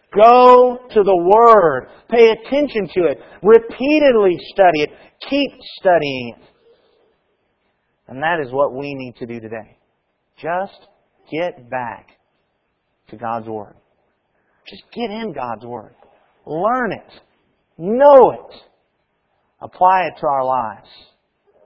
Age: 40-59